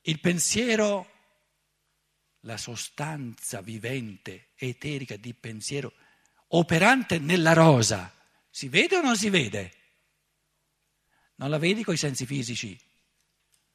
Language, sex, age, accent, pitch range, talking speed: Italian, male, 60-79, native, 140-215 Hz, 105 wpm